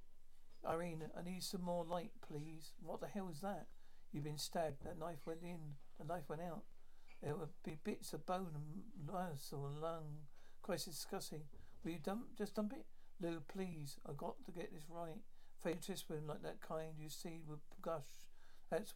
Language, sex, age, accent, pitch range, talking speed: English, male, 60-79, British, 155-190 Hz, 185 wpm